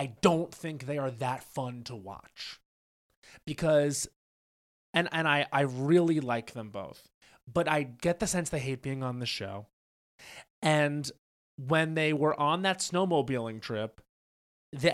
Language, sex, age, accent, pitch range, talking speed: English, male, 30-49, American, 130-175 Hz, 155 wpm